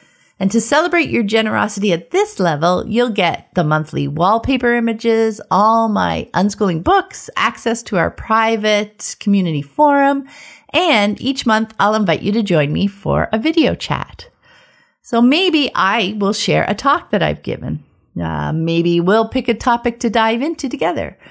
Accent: American